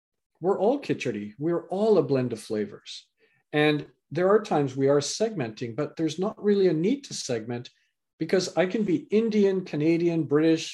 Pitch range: 135-180 Hz